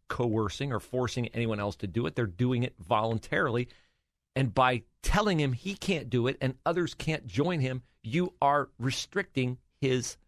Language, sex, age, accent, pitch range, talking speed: English, male, 40-59, American, 105-170 Hz, 170 wpm